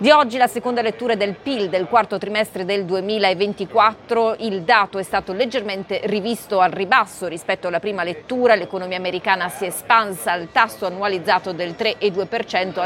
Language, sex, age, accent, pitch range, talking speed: Italian, female, 30-49, native, 195-240 Hz, 160 wpm